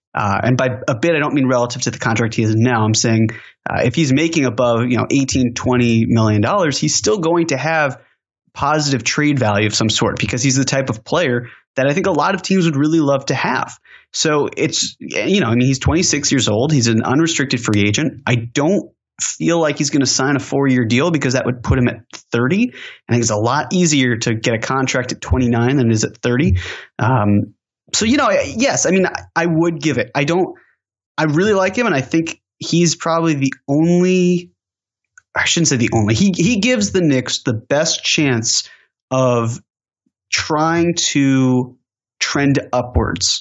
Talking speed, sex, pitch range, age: 210 wpm, male, 120-155 Hz, 20-39